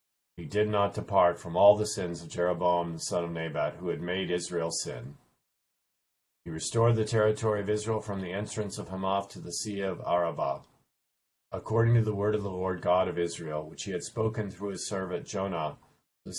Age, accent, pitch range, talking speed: 50-69, American, 85-105 Hz, 200 wpm